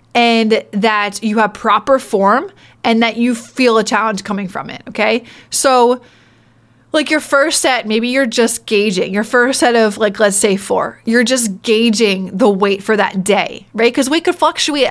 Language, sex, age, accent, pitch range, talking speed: English, female, 20-39, American, 215-260 Hz, 185 wpm